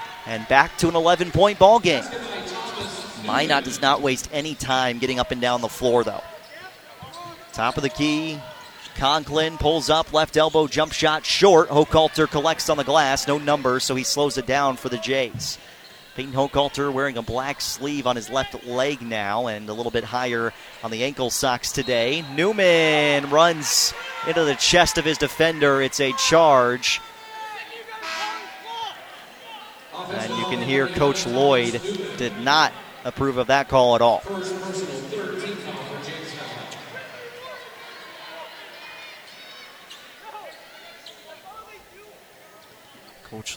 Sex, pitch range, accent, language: male, 125-160 Hz, American, English